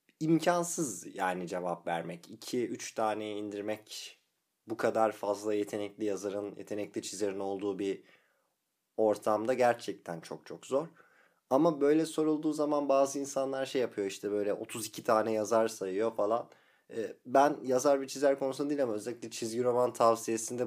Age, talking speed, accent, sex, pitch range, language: 30-49, 135 wpm, native, male, 105-140 Hz, Turkish